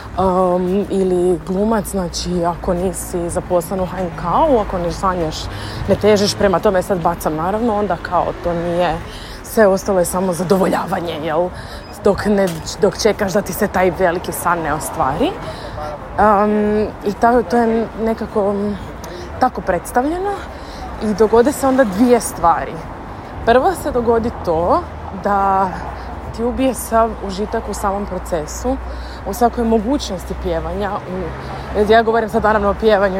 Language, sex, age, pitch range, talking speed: Croatian, female, 20-39, 190-225 Hz, 130 wpm